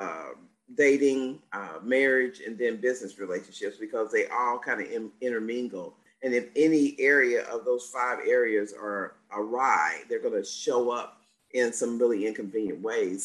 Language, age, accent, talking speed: English, 50-69, American, 160 wpm